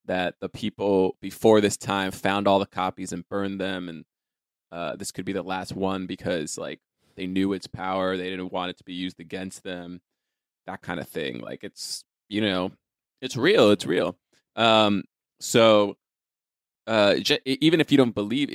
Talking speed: 180 wpm